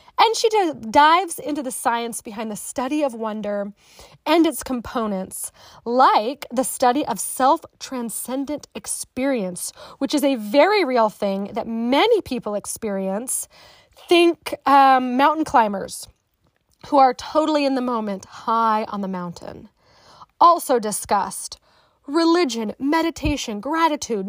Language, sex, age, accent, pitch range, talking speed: English, female, 30-49, American, 235-315 Hz, 120 wpm